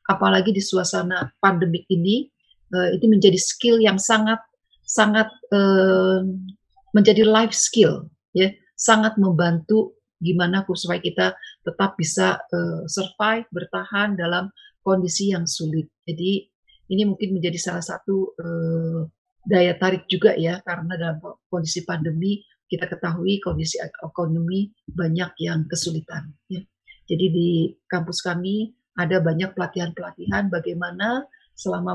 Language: Indonesian